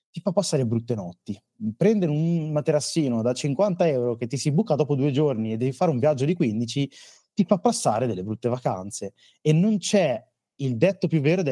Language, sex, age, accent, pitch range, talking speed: Italian, male, 30-49, native, 115-150 Hz, 200 wpm